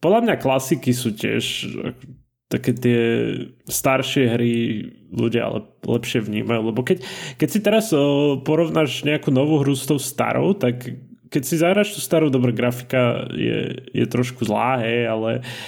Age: 20-39